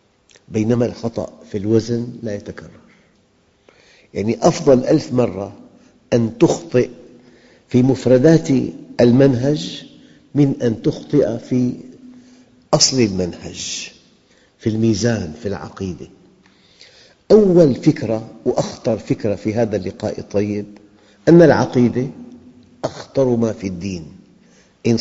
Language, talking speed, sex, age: Arabic, 95 wpm, male, 50-69